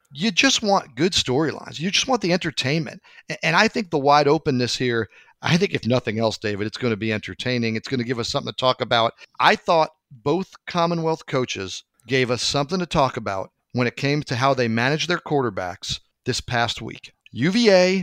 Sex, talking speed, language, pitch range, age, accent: male, 205 wpm, English, 125-175 Hz, 40-59, American